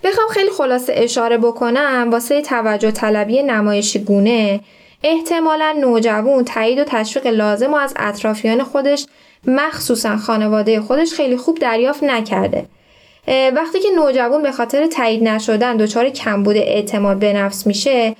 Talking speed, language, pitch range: 135 wpm, Persian, 220-285 Hz